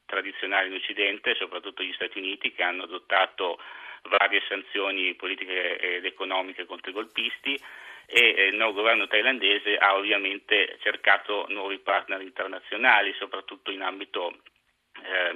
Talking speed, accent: 130 wpm, native